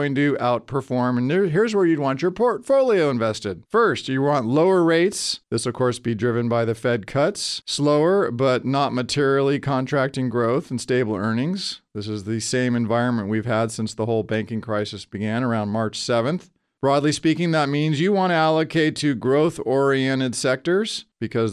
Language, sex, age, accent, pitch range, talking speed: English, male, 40-59, American, 115-160 Hz, 175 wpm